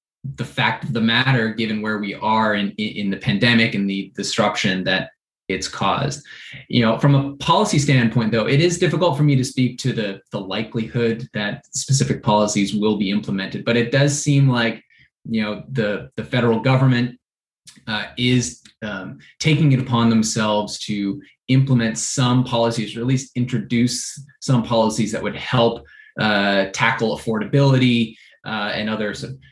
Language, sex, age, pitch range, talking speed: English, male, 20-39, 110-130 Hz, 165 wpm